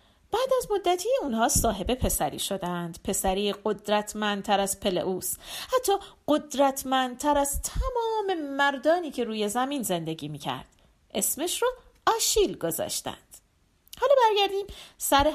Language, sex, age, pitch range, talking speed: Persian, female, 40-59, 200-320 Hz, 115 wpm